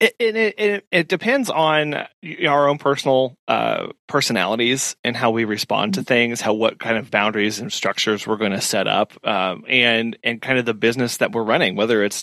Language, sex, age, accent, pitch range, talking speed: English, male, 30-49, American, 115-150 Hz, 200 wpm